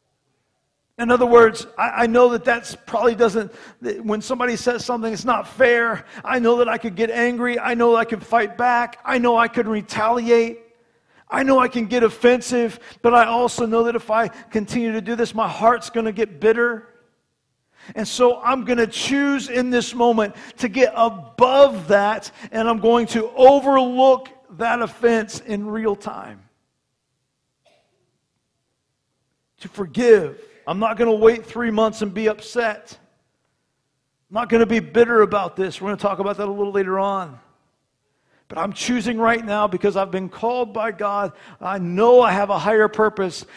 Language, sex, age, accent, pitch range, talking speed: English, male, 50-69, American, 185-235 Hz, 175 wpm